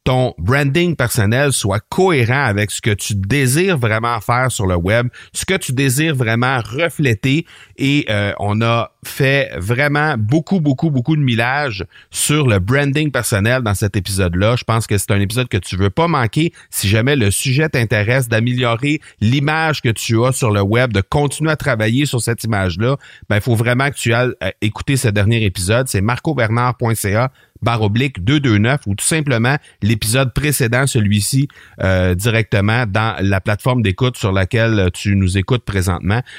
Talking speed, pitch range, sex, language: 170 wpm, 105-140 Hz, male, French